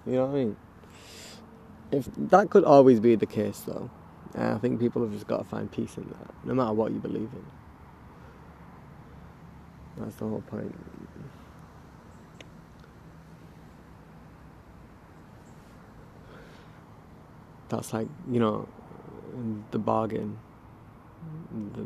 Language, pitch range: English, 105-120 Hz